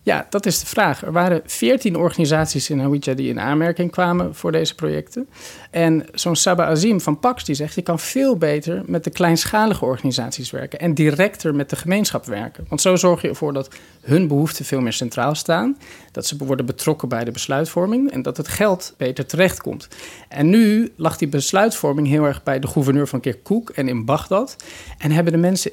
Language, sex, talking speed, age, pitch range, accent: Dutch, male, 200 wpm, 40-59, 135-175 Hz, Dutch